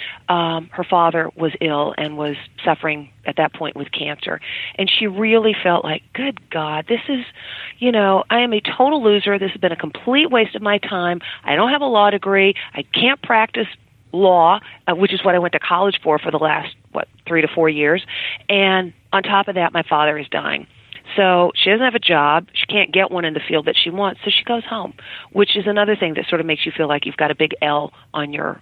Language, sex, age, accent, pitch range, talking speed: English, female, 40-59, American, 160-205 Hz, 235 wpm